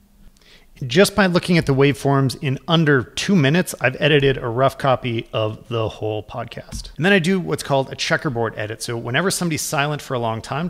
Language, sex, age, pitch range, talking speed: English, male, 40-59, 115-155 Hz, 200 wpm